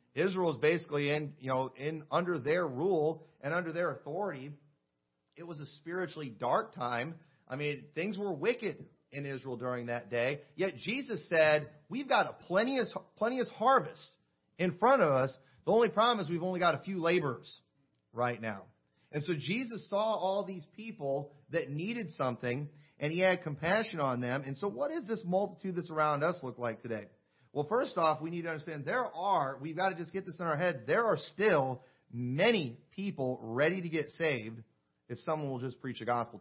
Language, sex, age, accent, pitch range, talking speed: English, male, 40-59, American, 135-190 Hz, 195 wpm